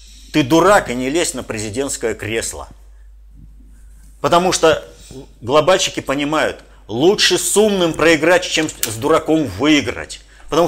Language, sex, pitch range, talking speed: Russian, male, 125-170 Hz, 120 wpm